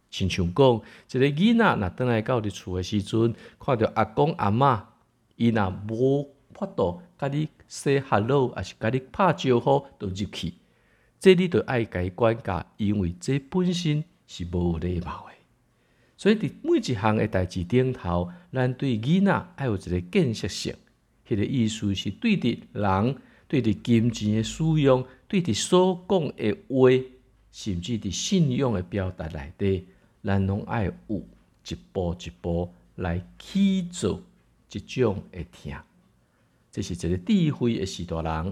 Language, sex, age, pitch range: Chinese, male, 50-69, 95-135 Hz